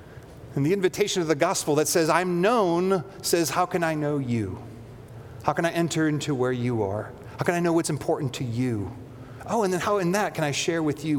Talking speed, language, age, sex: 230 wpm, English, 40-59, male